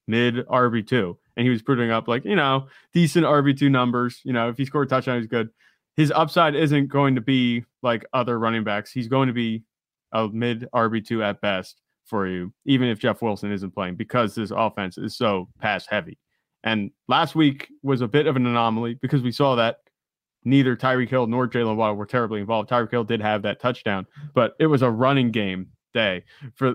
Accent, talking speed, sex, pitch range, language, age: American, 215 wpm, male, 110-135 Hz, English, 20-39